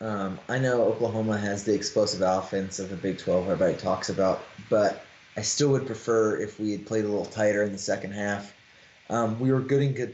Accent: American